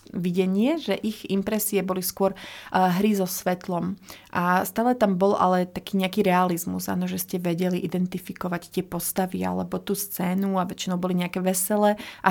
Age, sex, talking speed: 30-49, female, 165 wpm